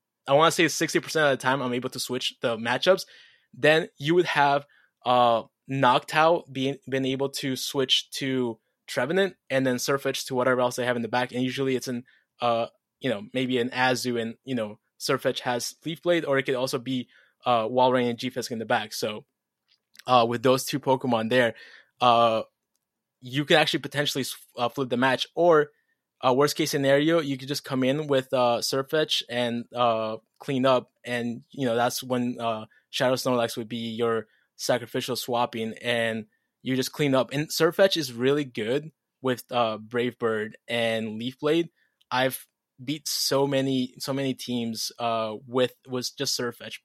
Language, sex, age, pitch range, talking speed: English, male, 20-39, 120-140 Hz, 185 wpm